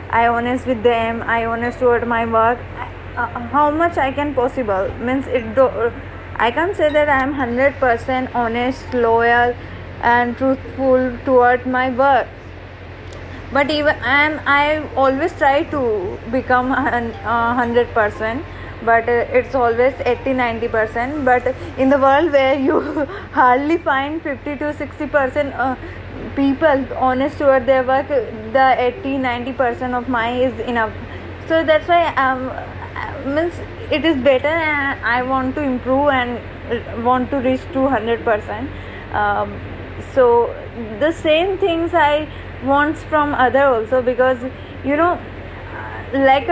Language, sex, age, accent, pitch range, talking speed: Hindi, female, 20-39, native, 245-295 Hz, 140 wpm